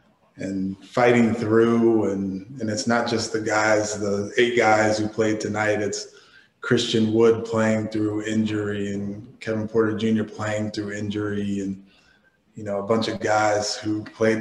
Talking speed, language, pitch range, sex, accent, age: 160 wpm, English, 105-115 Hz, male, American, 20-39